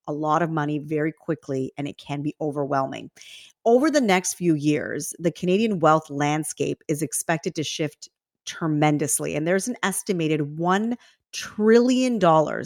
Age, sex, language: 40-59, female, English